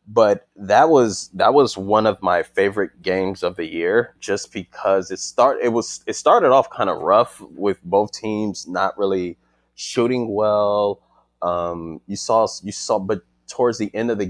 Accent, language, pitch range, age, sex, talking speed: American, English, 90-100 Hz, 20-39, male, 180 wpm